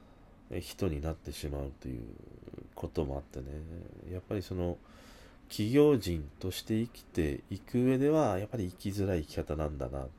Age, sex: 40-59, male